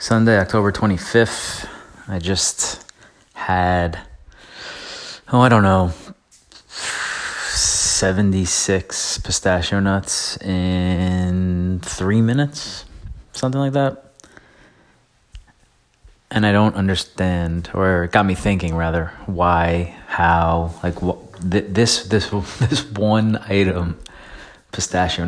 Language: English